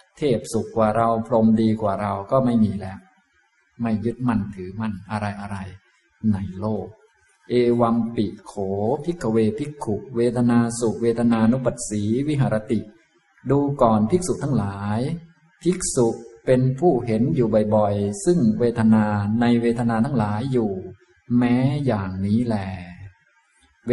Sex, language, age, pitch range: male, Thai, 20-39, 105-120 Hz